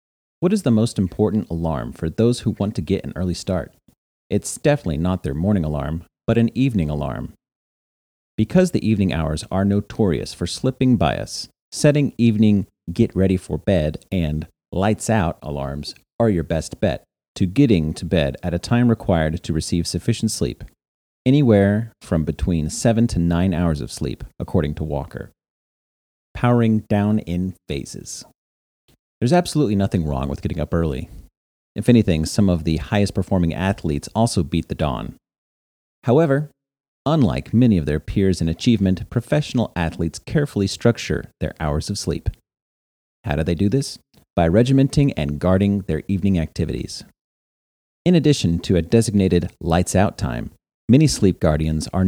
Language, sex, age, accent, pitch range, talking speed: English, male, 40-59, American, 80-115 Hz, 150 wpm